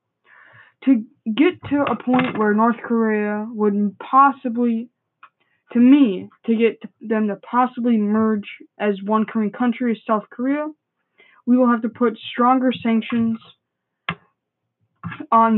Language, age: English, 20-39